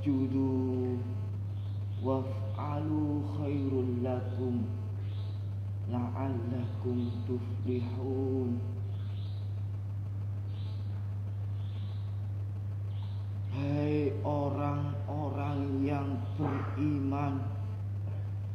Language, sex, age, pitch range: Indonesian, male, 40-59, 100-105 Hz